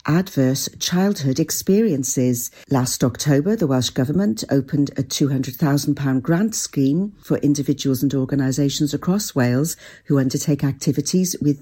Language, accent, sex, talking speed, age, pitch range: English, British, female, 120 wpm, 50-69, 135-175 Hz